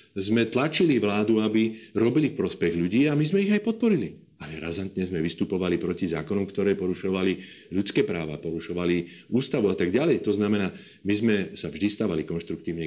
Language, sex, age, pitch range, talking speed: Slovak, male, 40-59, 85-115 Hz, 175 wpm